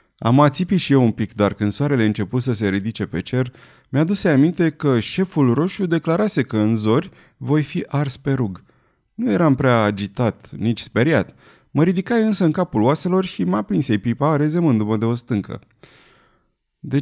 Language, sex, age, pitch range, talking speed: Romanian, male, 30-49, 110-155 Hz, 185 wpm